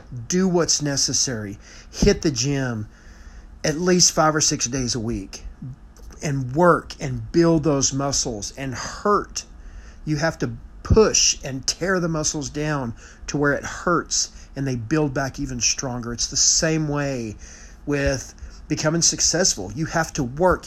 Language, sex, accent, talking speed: English, male, American, 150 wpm